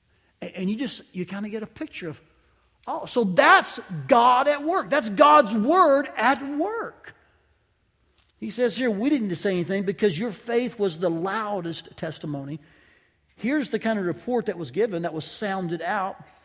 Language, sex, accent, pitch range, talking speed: English, male, American, 170-240 Hz, 170 wpm